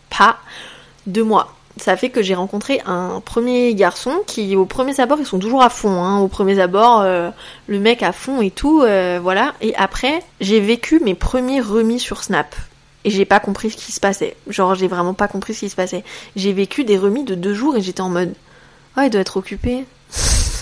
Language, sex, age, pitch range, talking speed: French, female, 20-39, 190-235 Hz, 220 wpm